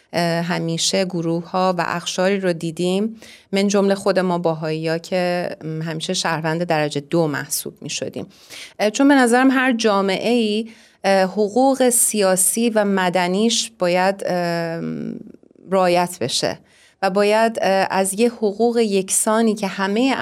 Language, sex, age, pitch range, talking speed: Persian, female, 30-49, 175-220 Hz, 120 wpm